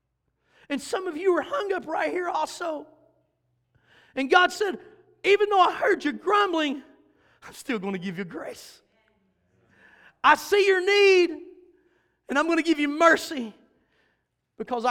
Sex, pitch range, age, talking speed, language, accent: male, 240-330 Hz, 40-59, 155 wpm, English, American